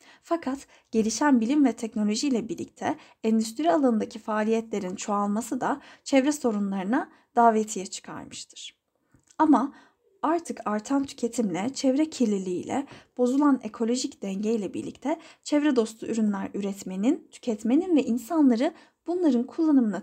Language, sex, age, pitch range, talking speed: Turkish, female, 10-29, 230-305 Hz, 110 wpm